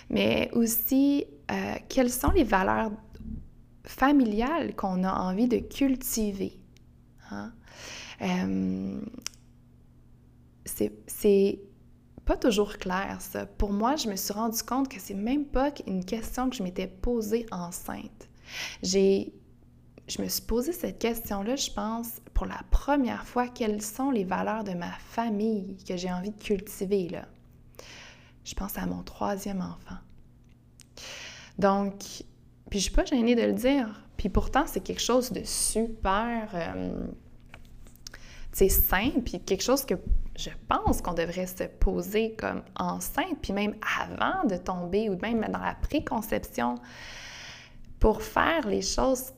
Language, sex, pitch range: French, female, 180-240 Hz